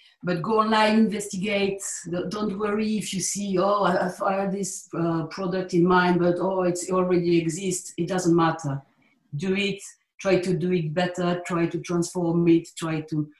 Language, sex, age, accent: English, female, 50-69, French